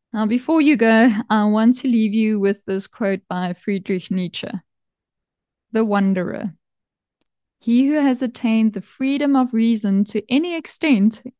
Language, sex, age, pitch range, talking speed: English, female, 20-39, 205-245 Hz, 145 wpm